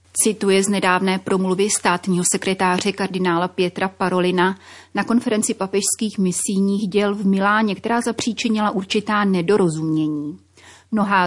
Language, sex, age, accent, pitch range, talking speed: Czech, female, 30-49, native, 175-215 Hz, 110 wpm